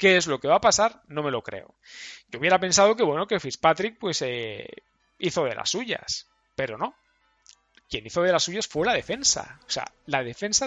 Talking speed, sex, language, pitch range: 215 wpm, male, Spanish, 135-205 Hz